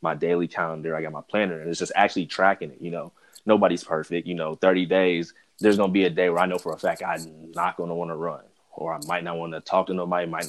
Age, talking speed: 20-39, 275 wpm